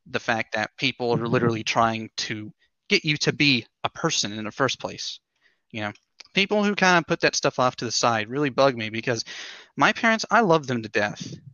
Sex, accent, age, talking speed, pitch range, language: male, American, 30-49, 220 wpm, 110-135 Hz, English